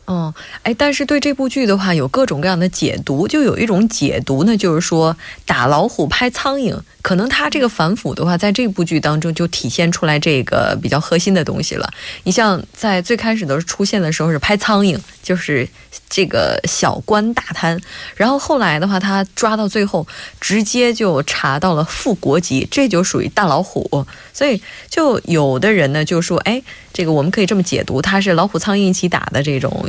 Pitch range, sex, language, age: 155-215 Hz, female, Korean, 20-39